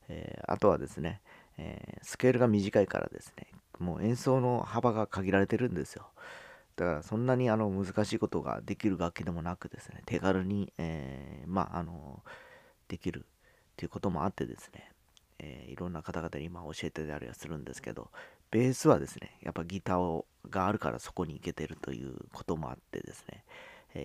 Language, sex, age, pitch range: Japanese, male, 40-59, 80-105 Hz